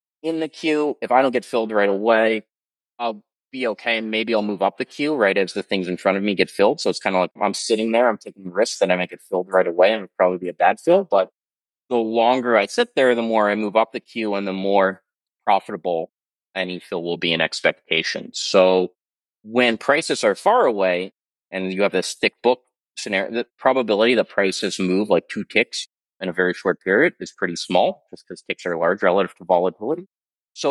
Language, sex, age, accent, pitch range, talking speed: English, male, 30-49, American, 95-125 Hz, 225 wpm